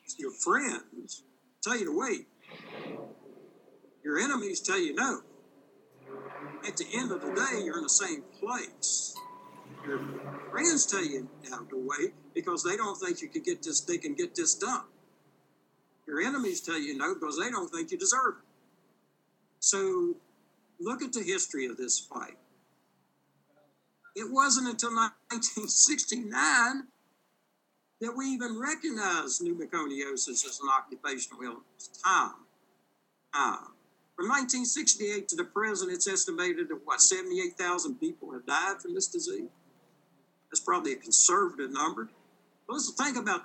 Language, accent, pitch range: English, American, 235-365 Hz